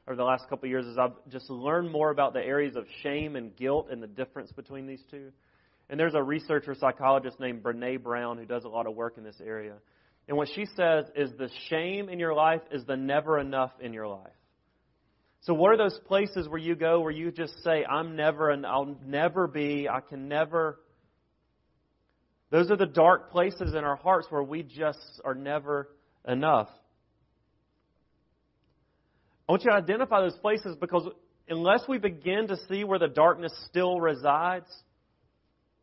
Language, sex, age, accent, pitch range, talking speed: English, male, 30-49, American, 130-165 Hz, 185 wpm